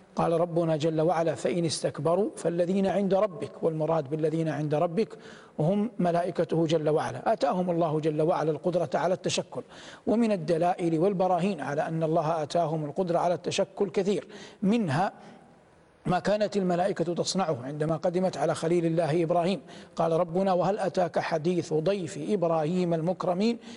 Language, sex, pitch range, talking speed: Arabic, male, 165-195 Hz, 135 wpm